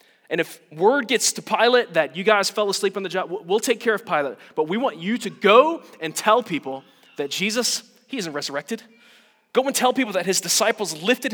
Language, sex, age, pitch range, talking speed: English, male, 30-49, 165-235 Hz, 215 wpm